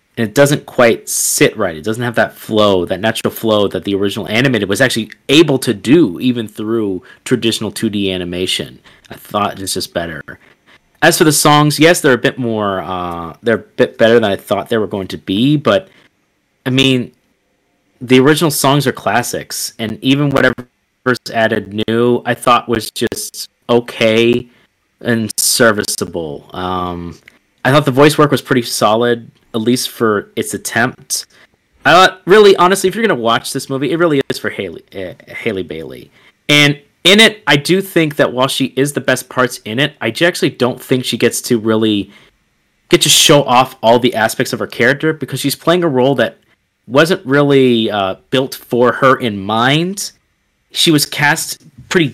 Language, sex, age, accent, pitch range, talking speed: English, male, 30-49, American, 110-140 Hz, 185 wpm